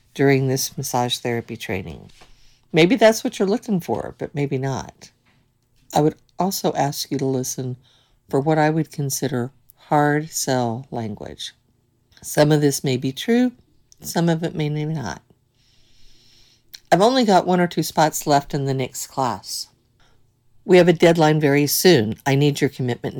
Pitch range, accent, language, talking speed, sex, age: 120-155 Hz, American, English, 160 wpm, female, 50-69